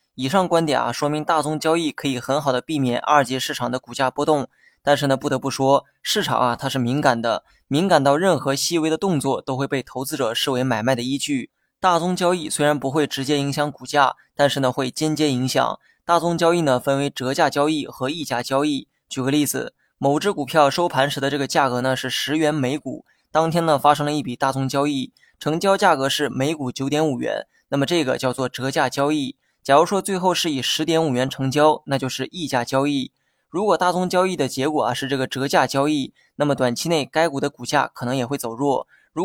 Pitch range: 130-155 Hz